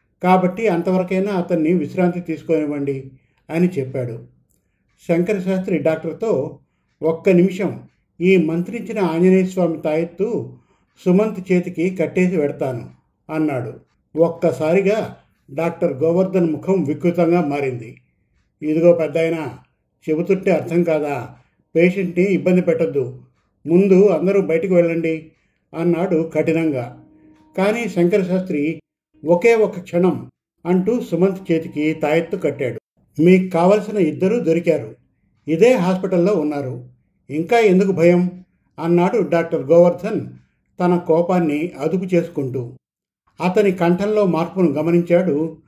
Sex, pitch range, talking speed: male, 155-185 Hz, 95 wpm